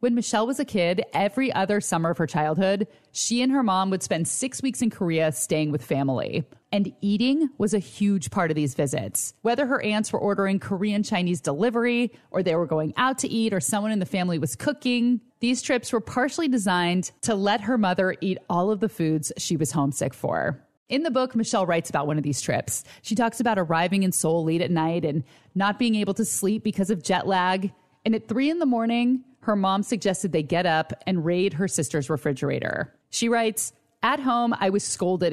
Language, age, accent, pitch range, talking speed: English, 30-49, American, 165-220 Hz, 210 wpm